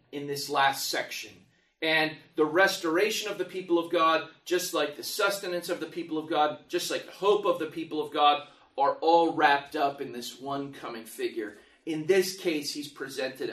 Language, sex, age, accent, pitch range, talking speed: English, male, 30-49, American, 145-185 Hz, 195 wpm